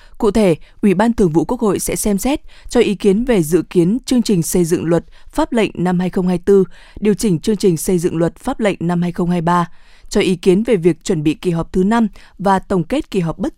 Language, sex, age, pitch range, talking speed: Vietnamese, female, 20-39, 175-220 Hz, 240 wpm